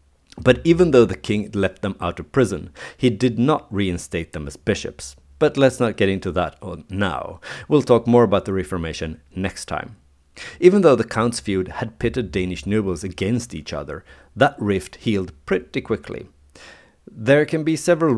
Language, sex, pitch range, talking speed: English, male, 85-120 Hz, 180 wpm